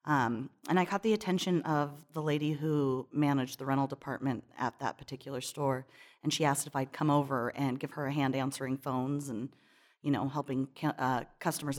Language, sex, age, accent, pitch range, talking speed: English, female, 30-49, American, 140-170 Hz, 190 wpm